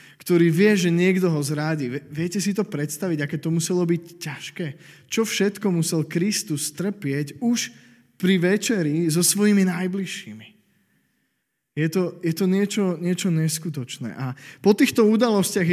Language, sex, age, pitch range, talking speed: Slovak, male, 20-39, 140-195 Hz, 140 wpm